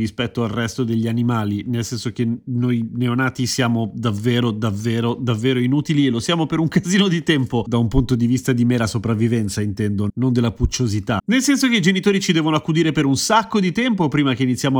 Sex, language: male, Italian